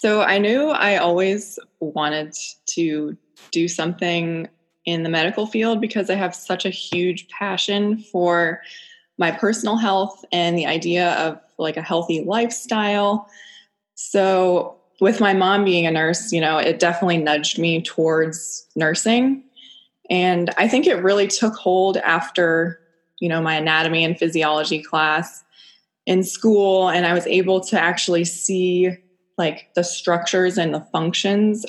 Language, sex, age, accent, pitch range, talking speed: English, female, 20-39, American, 165-195 Hz, 145 wpm